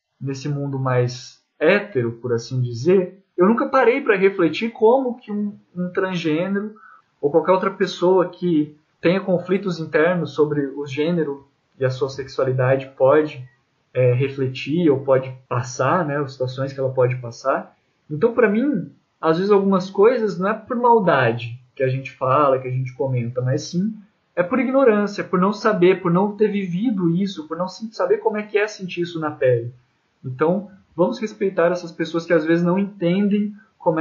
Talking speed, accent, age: 175 wpm, Brazilian, 20-39